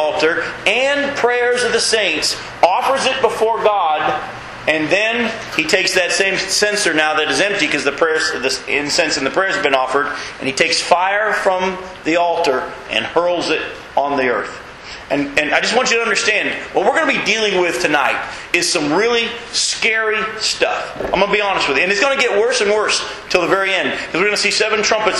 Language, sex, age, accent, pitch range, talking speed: English, male, 40-59, American, 165-205 Hz, 215 wpm